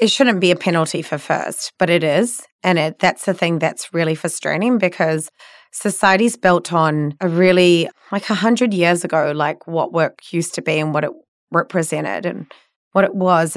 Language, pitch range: English, 165-205 Hz